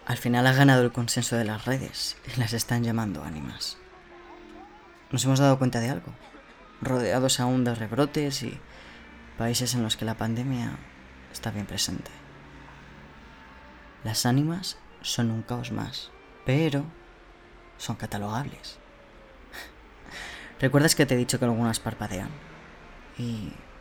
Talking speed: 130 wpm